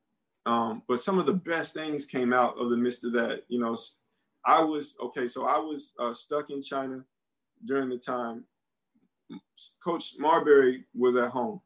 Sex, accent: male, American